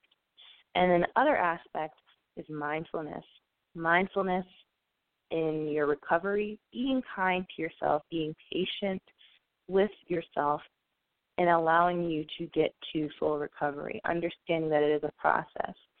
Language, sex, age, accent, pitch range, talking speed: English, female, 20-39, American, 155-200 Hz, 125 wpm